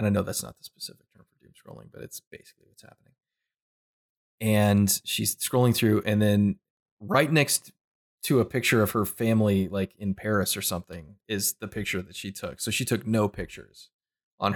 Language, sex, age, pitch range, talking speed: English, male, 20-39, 100-115 Hz, 195 wpm